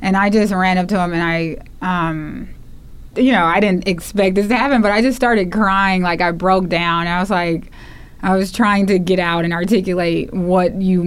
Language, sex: English, female